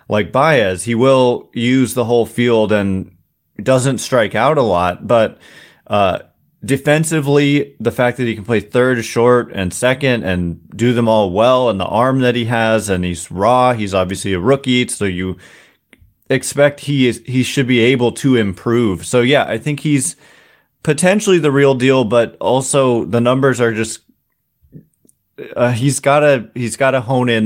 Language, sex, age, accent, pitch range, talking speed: English, male, 30-49, American, 110-135 Hz, 175 wpm